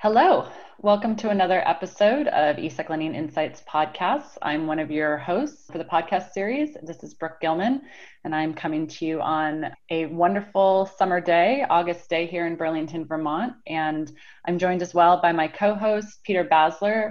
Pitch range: 160-195 Hz